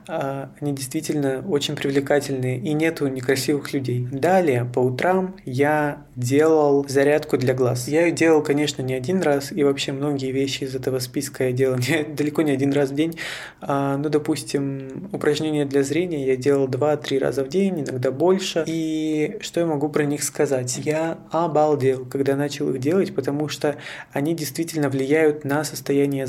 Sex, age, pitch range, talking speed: male, 20-39, 135-155 Hz, 160 wpm